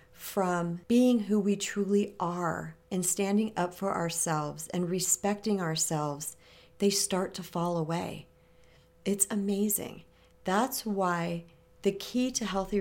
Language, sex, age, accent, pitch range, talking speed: English, female, 40-59, American, 165-200 Hz, 125 wpm